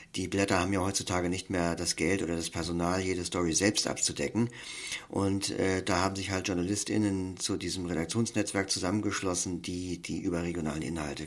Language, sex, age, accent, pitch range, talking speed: German, male, 50-69, German, 85-105 Hz, 165 wpm